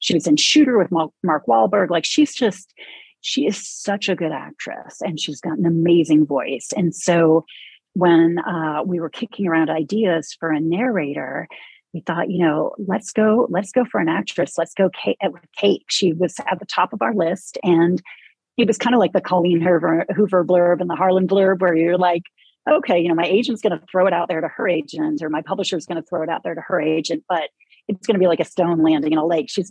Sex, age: female, 30-49